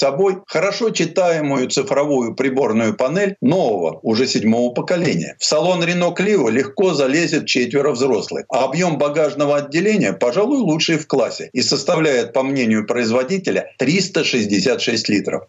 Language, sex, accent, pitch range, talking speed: Russian, male, native, 135-185 Hz, 130 wpm